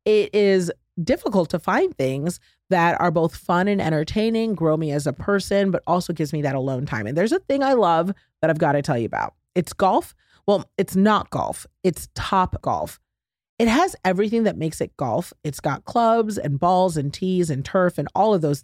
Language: English